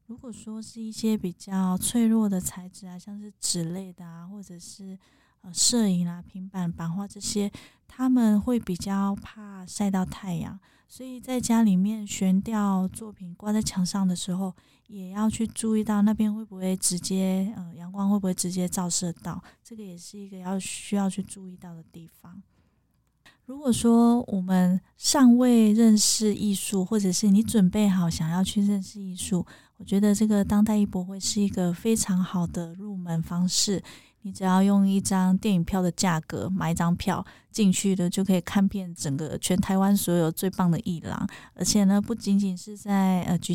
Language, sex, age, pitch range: Chinese, female, 20-39, 180-205 Hz